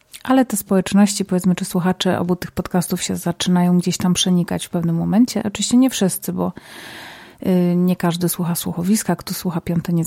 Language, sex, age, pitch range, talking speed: Polish, female, 30-49, 175-195 Hz, 175 wpm